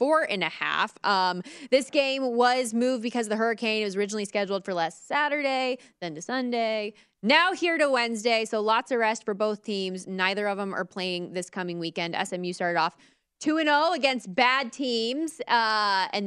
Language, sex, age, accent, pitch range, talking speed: English, female, 20-39, American, 175-235 Hz, 195 wpm